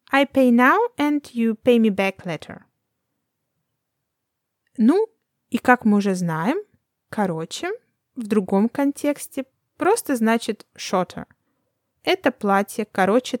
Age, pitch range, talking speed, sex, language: 20-39, 195-260 Hz, 110 wpm, female, Russian